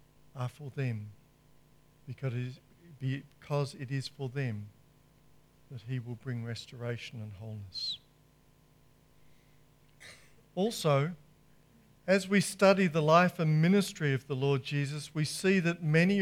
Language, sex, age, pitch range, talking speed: English, male, 50-69, 145-210 Hz, 120 wpm